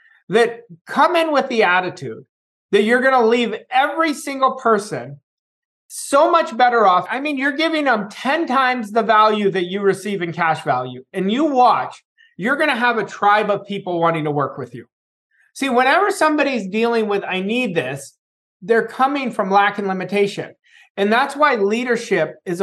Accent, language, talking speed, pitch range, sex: American, English, 180 wpm, 190-260 Hz, male